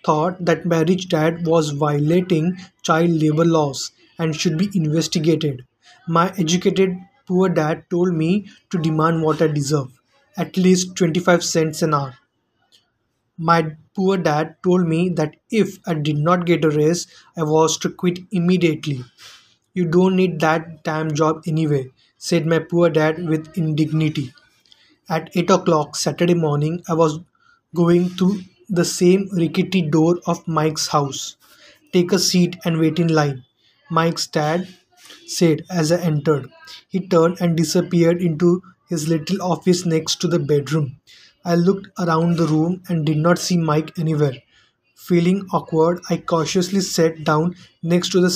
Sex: male